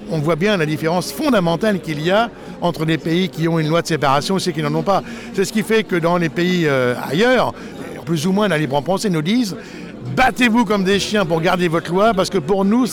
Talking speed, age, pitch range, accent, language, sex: 265 wpm, 60-79, 170-215 Hz, French, French, male